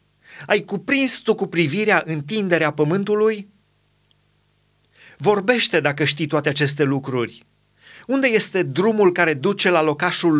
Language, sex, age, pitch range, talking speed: Romanian, male, 30-49, 150-195 Hz, 115 wpm